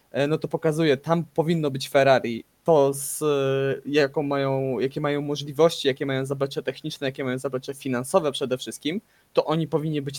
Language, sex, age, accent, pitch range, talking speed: Polish, male, 20-39, native, 125-150 Hz, 165 wpm